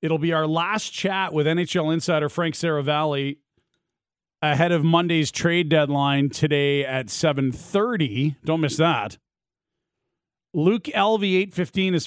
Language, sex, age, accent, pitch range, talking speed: English, male, 40-59, American, 130-165 Hz, 120 wpm